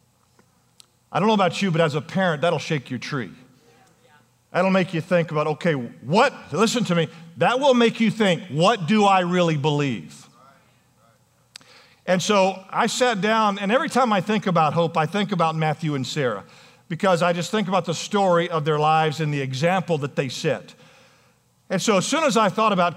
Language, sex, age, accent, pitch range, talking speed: English, male, 50-69, American, 160-200 Hz, 195 wpm